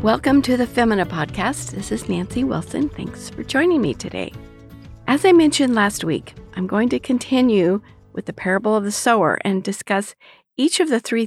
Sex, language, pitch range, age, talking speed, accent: female, English, 190-260 Hz, 50-69, 185 wpm, American